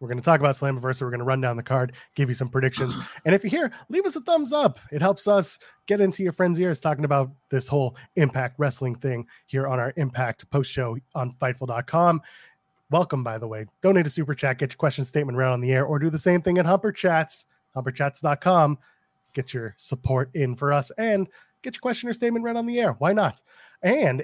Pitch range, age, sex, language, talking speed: 130-185 Hz, 20-39, male, English, 230 wpm